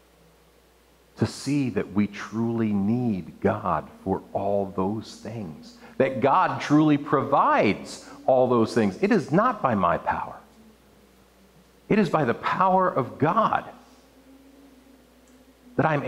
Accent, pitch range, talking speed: American, 110-170 Hz, 125 wpm